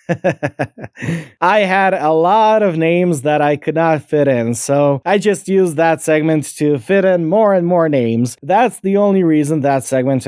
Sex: male